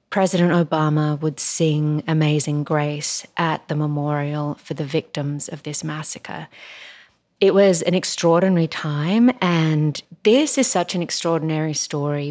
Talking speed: 130 wpm